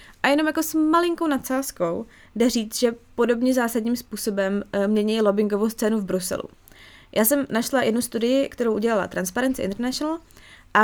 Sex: female